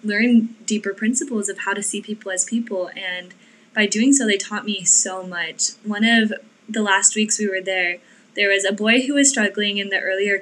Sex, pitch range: female, 185-220 Hz